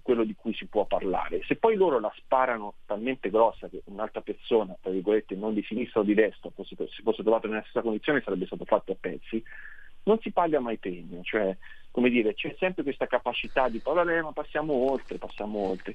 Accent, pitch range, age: native, 95-115 Hz, 40-59